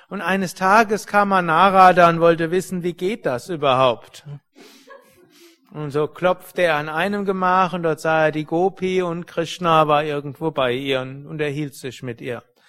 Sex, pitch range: male, 150-185 Hz